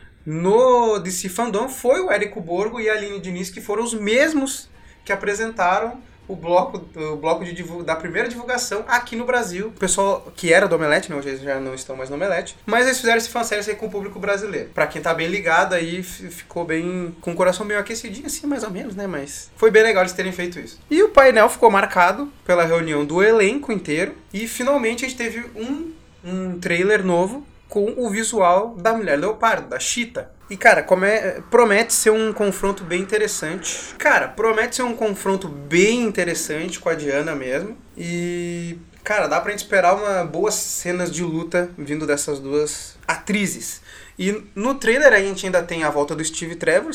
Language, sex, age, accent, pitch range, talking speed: Portuguese, male, 20-39, Brazilian, 165-220 Hz, 195 wpm